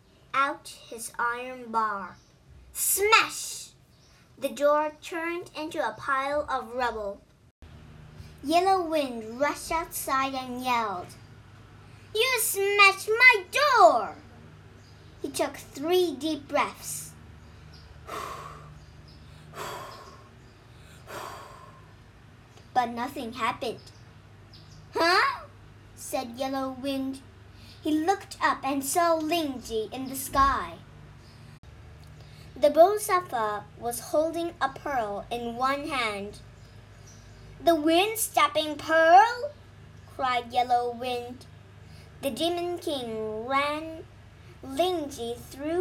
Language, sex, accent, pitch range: Chinese, male, American, 225-330 Hz